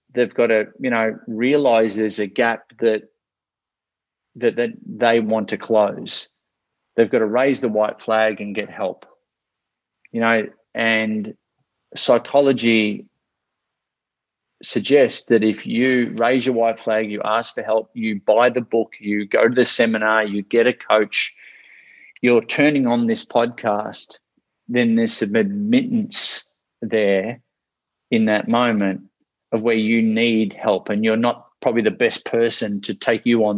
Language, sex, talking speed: English, male, 150 wpm